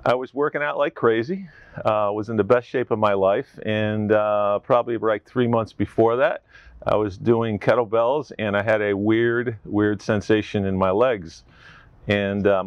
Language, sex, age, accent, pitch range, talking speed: English, male, 40-59, American, 100-110 Hz, 185 wpm